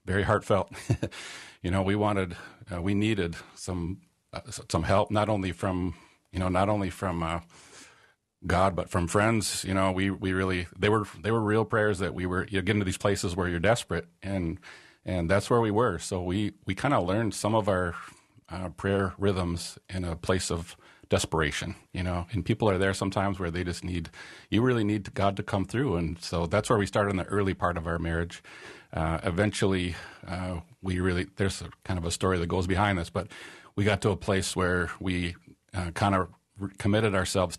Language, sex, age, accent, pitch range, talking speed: English, male, 40-59, American, 85-100 Hz, 210 wpm